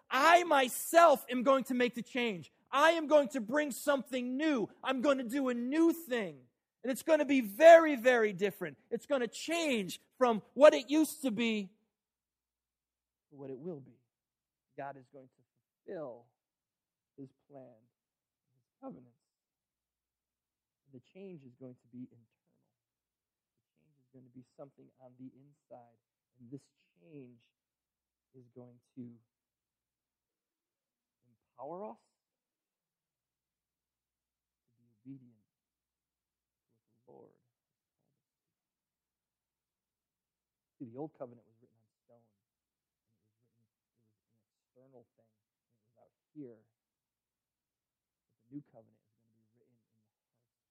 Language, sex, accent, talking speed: English, male, American, 140 wpm